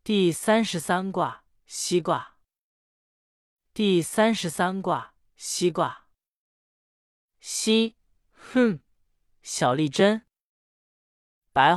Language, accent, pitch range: Chinese, native, 150-210 Hz